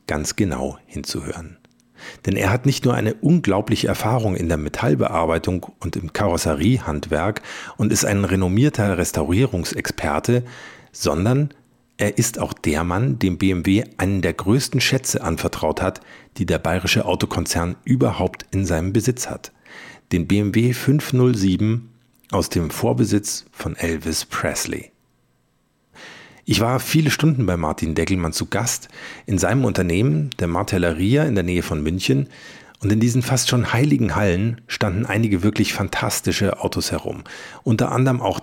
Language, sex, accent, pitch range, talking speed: German, male, German, 90-125 Hz, 140 wpm